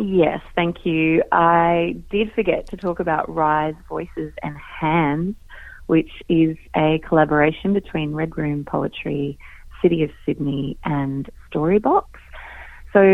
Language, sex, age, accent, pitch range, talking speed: English, female, 30-49, Australian, 150-180 Hz, 125 wpm